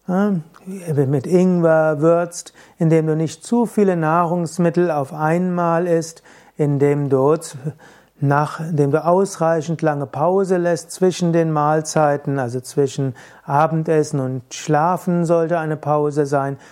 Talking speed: 120 wpm